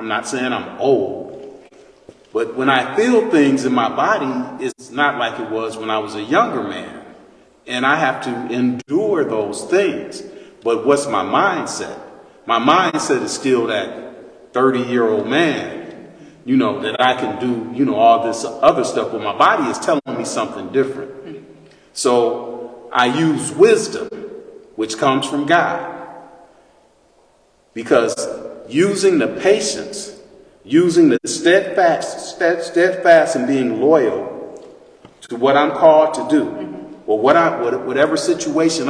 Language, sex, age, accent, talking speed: English, male, 40-59, American, 140 wpm